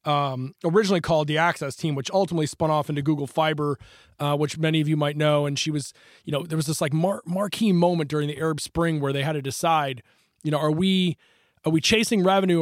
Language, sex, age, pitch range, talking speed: English, male, 20-39, 150-175 Hz, 235 wpm